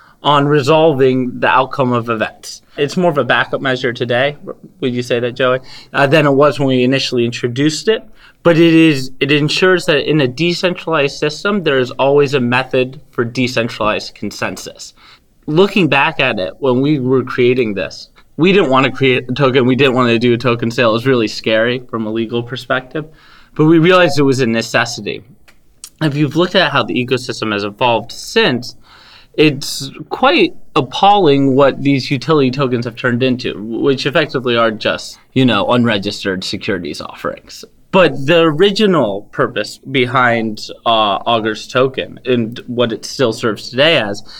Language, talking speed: English, 175 wpm